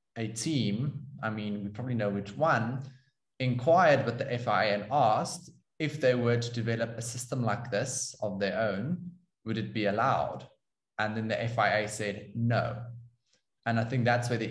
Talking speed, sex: 180 wpm, male